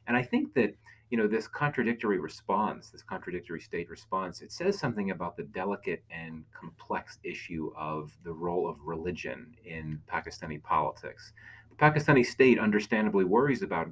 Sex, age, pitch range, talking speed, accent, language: male, 30-49, 90-125 Hz, 155 wpm, American, English